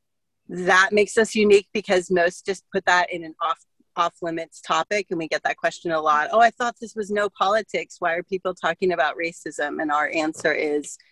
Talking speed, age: 210 wpm, 30-49